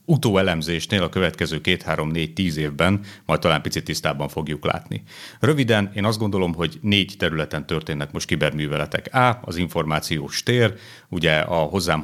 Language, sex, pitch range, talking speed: Hungarian, male, 75-95 Hz, 160 wpm